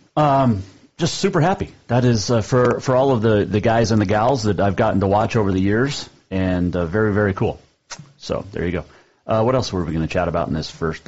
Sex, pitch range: male, 95-130 Hz